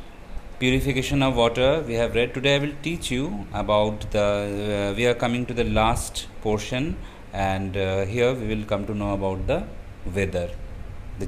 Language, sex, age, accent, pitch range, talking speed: English, male, 30-49, Indian, 95-110 Hz, 175 wpm